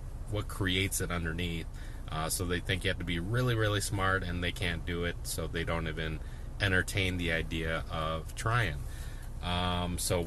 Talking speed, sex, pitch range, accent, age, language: 180 wpm, male, 85-115 Hz, American, 30-49, English